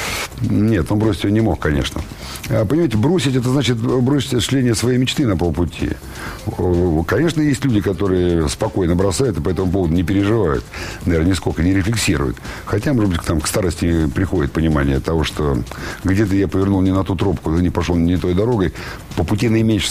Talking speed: 175 wpm